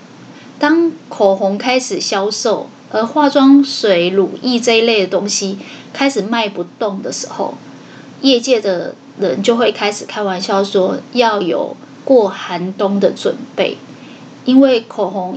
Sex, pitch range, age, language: female, 200-255 Hz, 20-39, Chinese